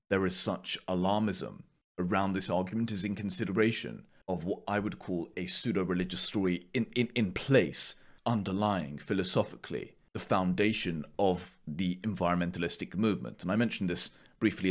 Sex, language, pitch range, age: male, Japanese, 90-110 Hz, 30-49